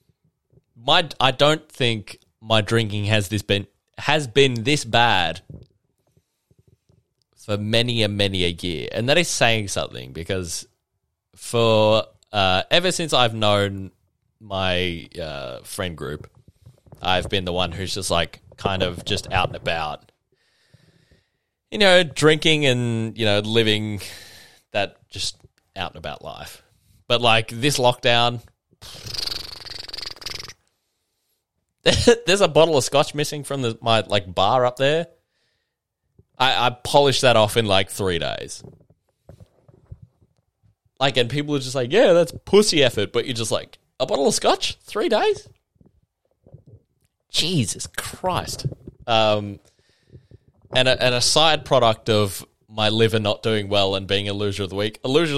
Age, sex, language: 20-39, male, English